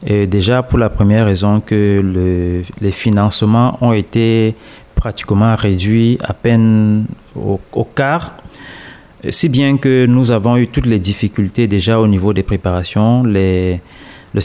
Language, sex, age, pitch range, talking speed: French, male, 30-49, 100-115 Hz, 145 wpm